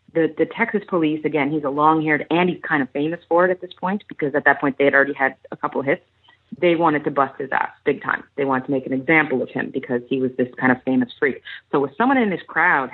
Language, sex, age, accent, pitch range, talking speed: English, female, 30-49, American, 150-195 Hz, 280 wpm